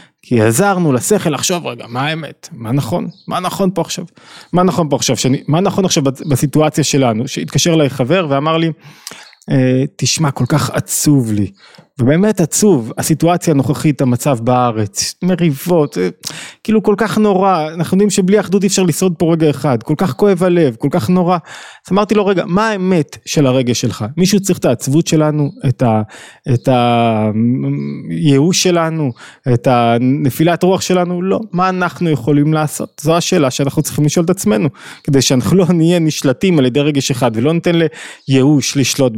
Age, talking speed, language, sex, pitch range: 20-39, 165 wpm, Hebrew, male, 135-175 Hz